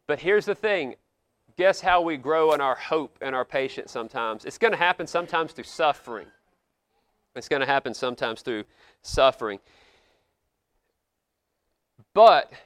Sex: male